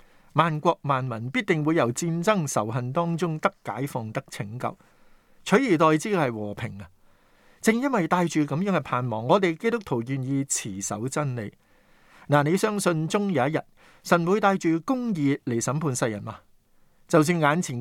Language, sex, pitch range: Chinese, male, 125-175 Hz